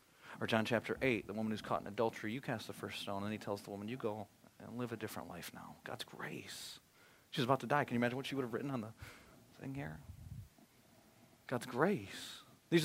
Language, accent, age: English, American, 30-49